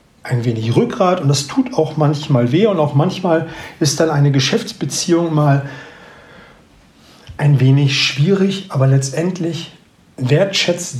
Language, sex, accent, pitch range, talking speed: German, male, German, 130-165 Hz, 125 wpm